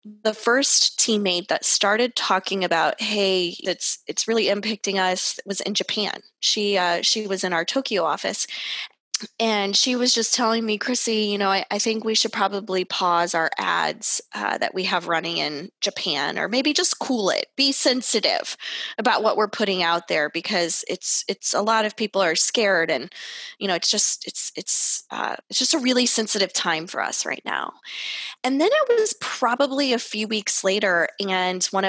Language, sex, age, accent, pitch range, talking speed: English, female, 20-39, American, 195-260 Hz, 190 wpm